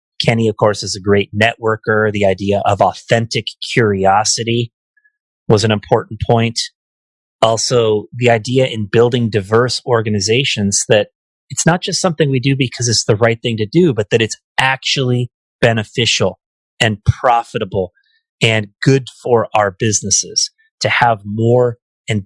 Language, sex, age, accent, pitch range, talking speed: English, male, 30-49, American, 100-120 Hz, 145 wpm